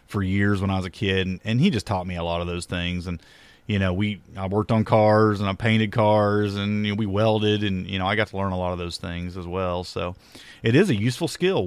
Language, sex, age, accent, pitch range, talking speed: English, male, 30-49, American, 95-130 Hz, 285 wpm